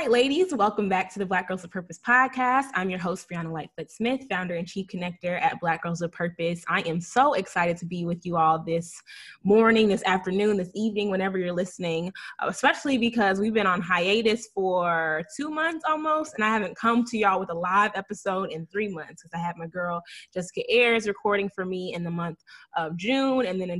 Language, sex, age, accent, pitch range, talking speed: English, female, 20-39, American, 175-210 Hz, 210 wpm